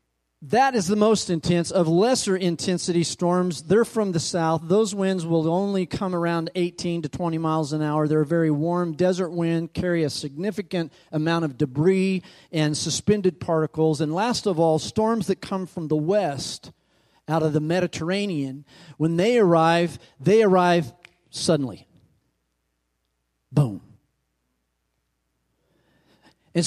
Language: English